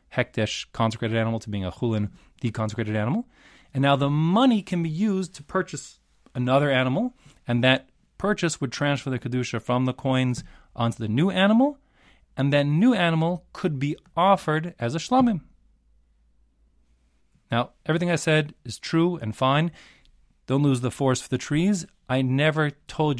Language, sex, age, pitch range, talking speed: English, male, 30-49, 110-150 Hz, 160 wpm